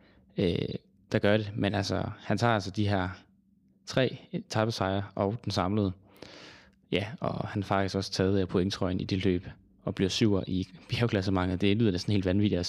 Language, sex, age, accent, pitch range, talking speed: Danish, male, 20-39, native, 95-105 Hz, 180 wpm